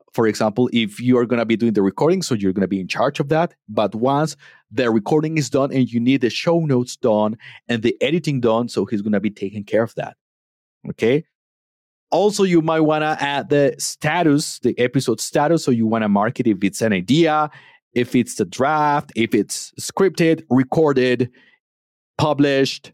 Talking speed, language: 200 wpm, English